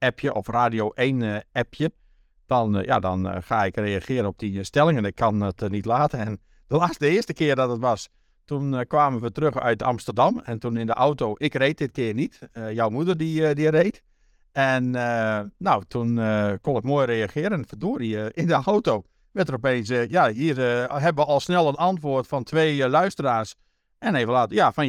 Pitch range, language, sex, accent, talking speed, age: 105-135 Hz, Dutch, male, Dutch, 210 wpm, 50-69